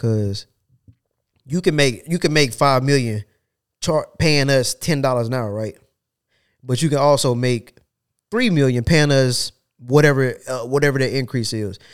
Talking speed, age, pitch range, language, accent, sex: 140 wpm, 20-39, 110-135 Hz, English, American, male